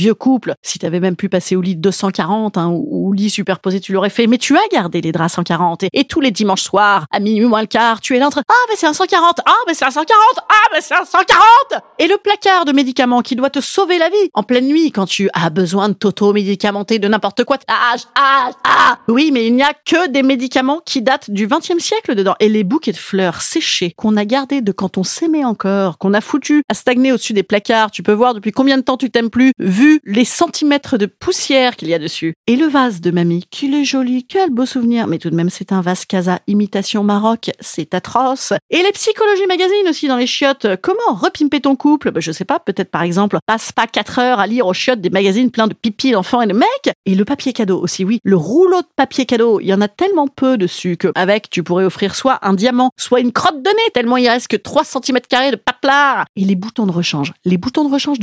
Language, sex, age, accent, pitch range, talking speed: French, female, 30-49, French, 195-280 Hz, 250 wpm